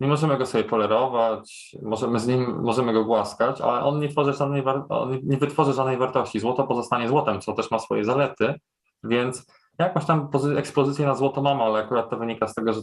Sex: male